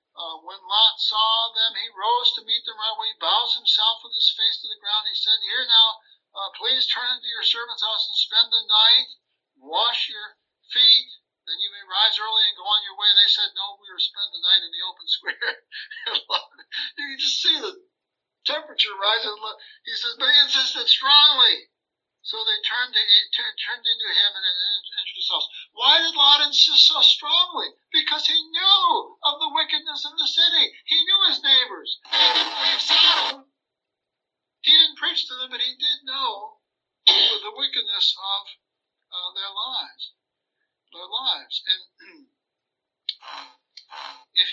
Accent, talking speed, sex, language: American, 170 wpm, male, English